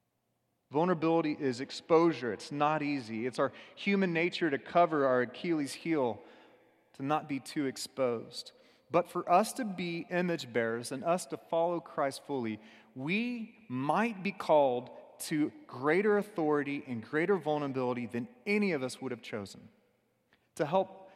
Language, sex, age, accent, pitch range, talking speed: English, male, 30-49, American, 120-175 Hz, 145 wpm